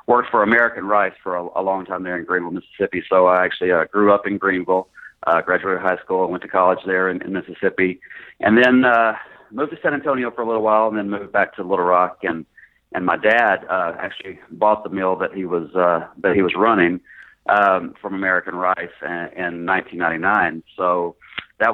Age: 40-59